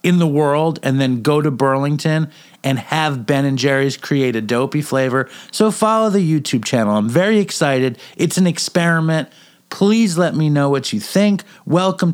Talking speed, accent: 180 wpm, American